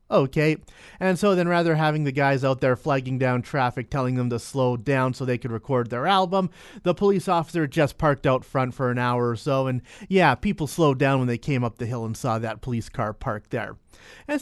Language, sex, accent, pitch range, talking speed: English, male, American, 125-165 Hz, 230 wpm